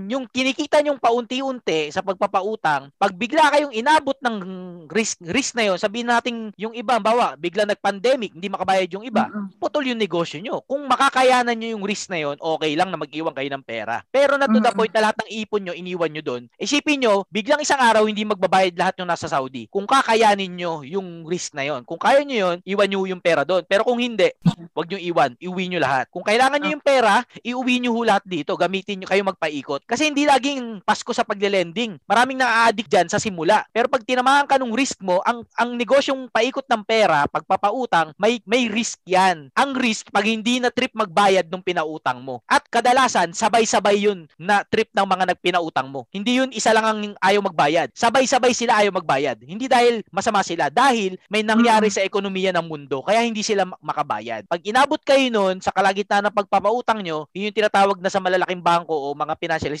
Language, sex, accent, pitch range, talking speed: Filipino, male, native, 185-240 Hz, 195 wpm